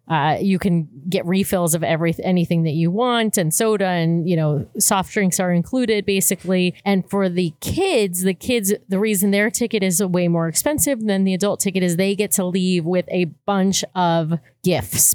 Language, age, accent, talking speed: English, 30-49, American, 195 wpm